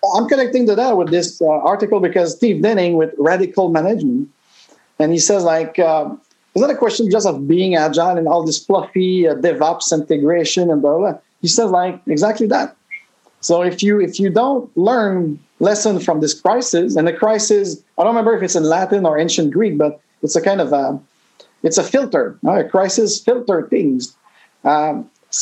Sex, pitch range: male, 165-220 Hz